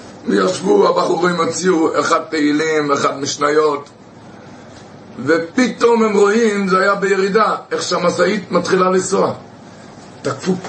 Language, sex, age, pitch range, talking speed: Hebrew, male, 60-79, 180-230 Hz, 100 wpm